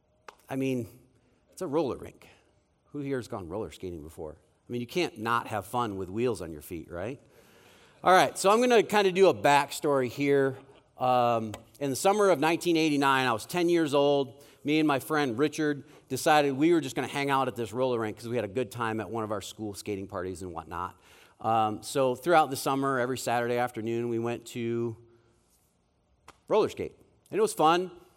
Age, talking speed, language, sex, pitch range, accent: 40-59, 210 wpm, English, male, 110-145 Hz, American